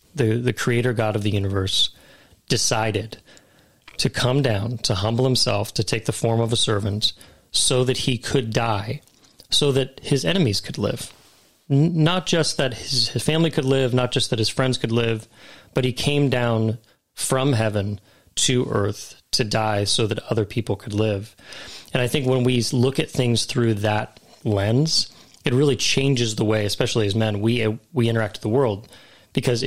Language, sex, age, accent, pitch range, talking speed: English, male, 30-49, American, 110-135 Hz, 180 wpm